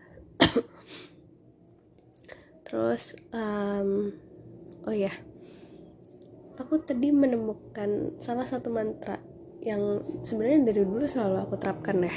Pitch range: 205-240 Hz